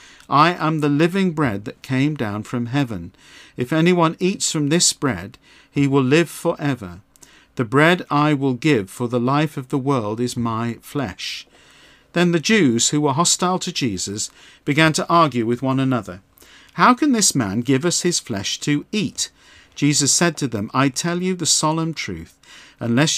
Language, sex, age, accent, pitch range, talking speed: English, male, 50-69, British, 120-155 Hz, 180 wpm